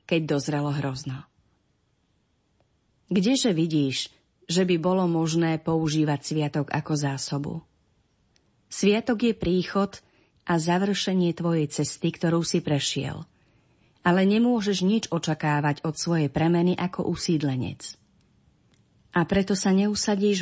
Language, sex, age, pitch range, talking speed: Slovak, female, 30-49, 145-185 Hz, 105 wpm